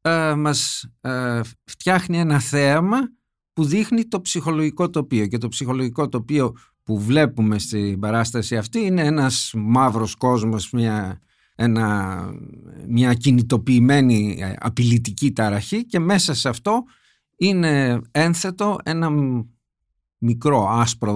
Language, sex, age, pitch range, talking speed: Greek, male, 50-69, 115-165 Hz, 100 wpm